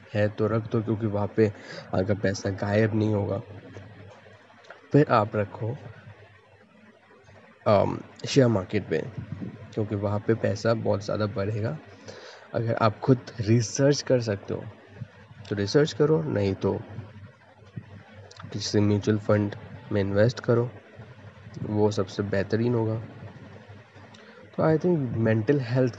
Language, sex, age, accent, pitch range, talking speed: Hindi, male, 20-39, native, 105-120 Hz, 120 wpm